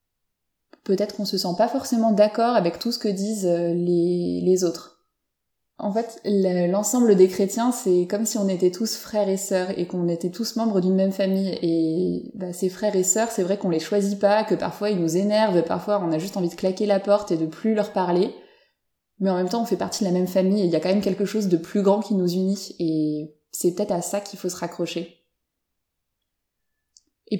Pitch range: 180-215 Hz